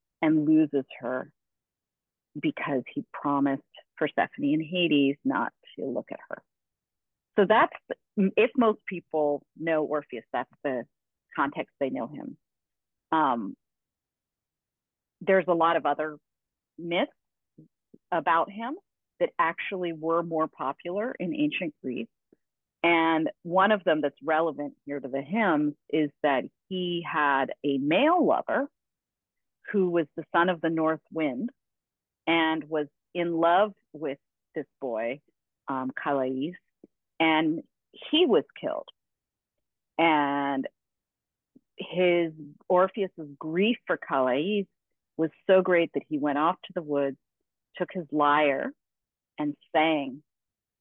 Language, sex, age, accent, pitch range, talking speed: English, female, 40-59, American, 145-185 Hz, 120 wpm